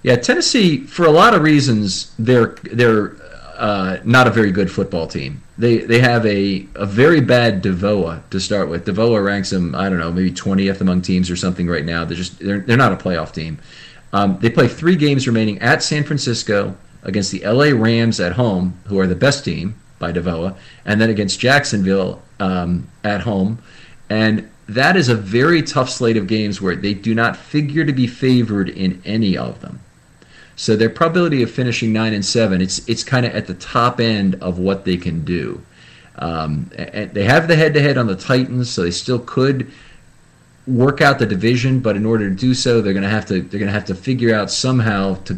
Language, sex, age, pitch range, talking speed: English, male, 40-59, 95-125 Hz, 210 wpm